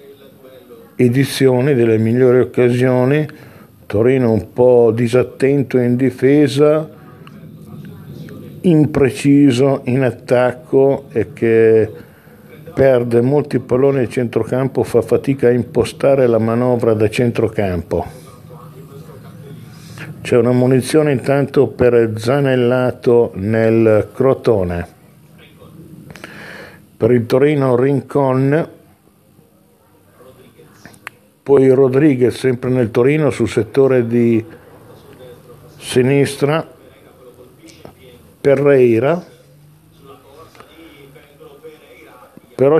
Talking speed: 70 wpm